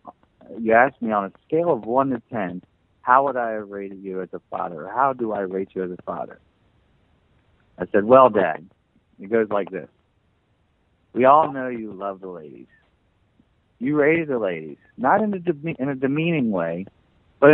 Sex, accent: male, American